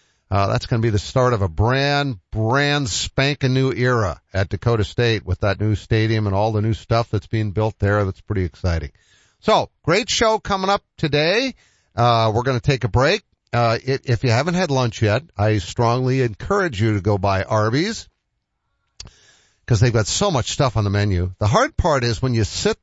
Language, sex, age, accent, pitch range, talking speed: English, male, 50-69, American, 95-120 Hz, 205 wpm